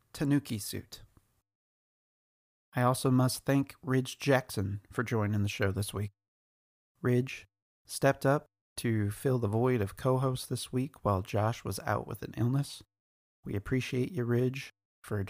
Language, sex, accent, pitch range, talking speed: English, male, American, 105-130 Hz, 145 wpm